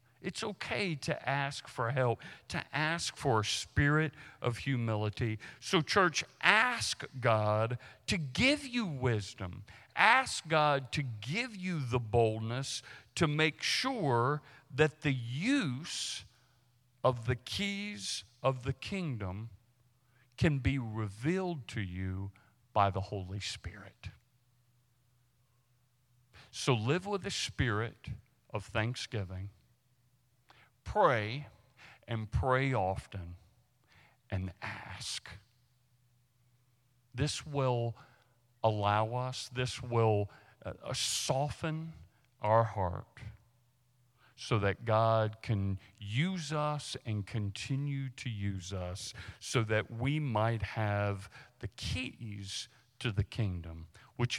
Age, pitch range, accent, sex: 50-69, 110-135 Hz, American, male